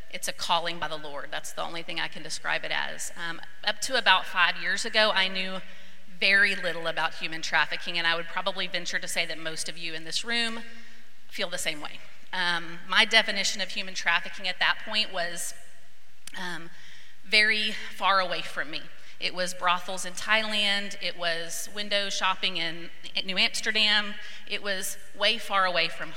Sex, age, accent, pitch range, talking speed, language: female, 30-49, American, 175-210 Hz, 190 wpm, English